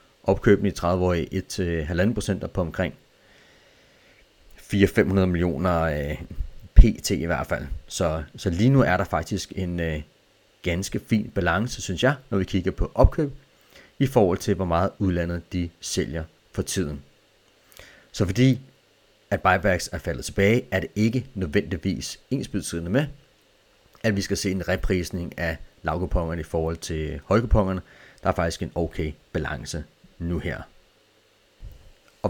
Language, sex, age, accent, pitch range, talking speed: Danish, male, 30-49, native, 85-105 Hz, 145 wpm